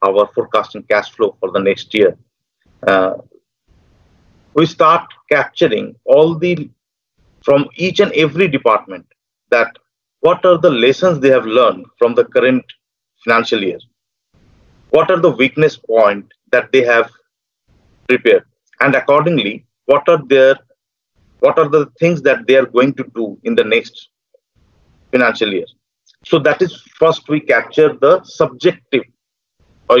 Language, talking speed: English, 140 wpm